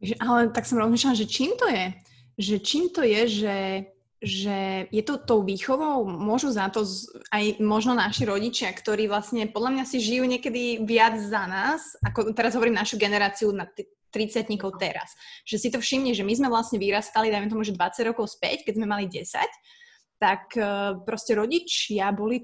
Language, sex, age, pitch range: Slovak, female, 20-39, 200-230 Hz